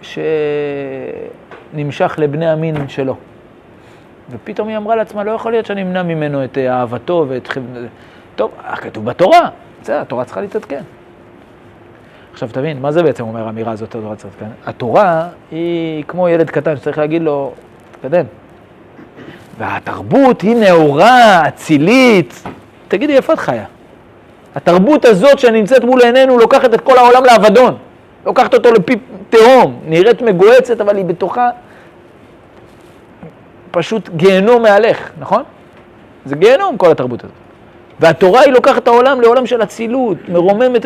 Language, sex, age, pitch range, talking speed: Hebrew, male, 40-59, 150-235 Hz, 130 wpm